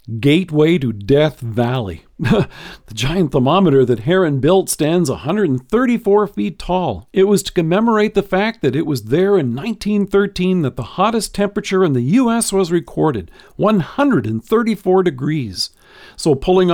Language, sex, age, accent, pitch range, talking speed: English, male, 50-69, American, 135-195 Hz, 140 wpm